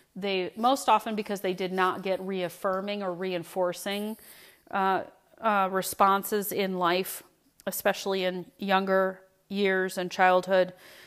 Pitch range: 180-210 Hz